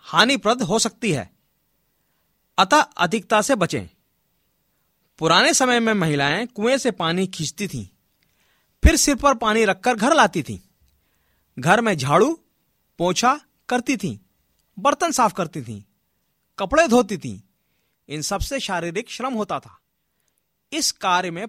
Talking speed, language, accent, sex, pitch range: 135 wpm, Hindi, native, male, 165-260 Hz